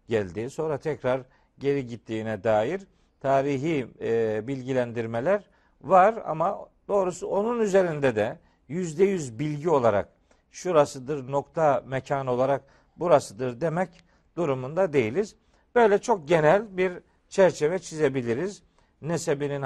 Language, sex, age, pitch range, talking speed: Turkish, male, 50-69, 120-155 Hz, 105 wpm